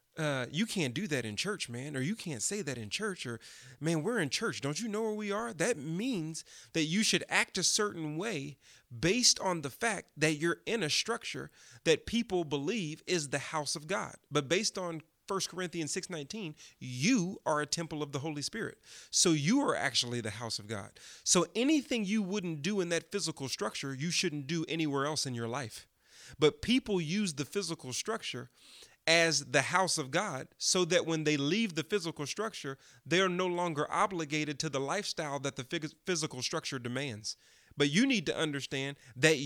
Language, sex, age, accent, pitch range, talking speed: English, male, 30-49, American, 135-180 Hz, 200 wpm